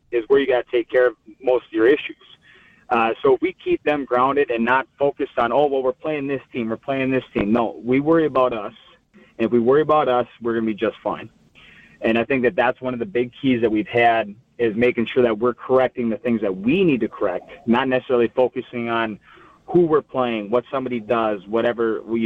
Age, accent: 30-49, American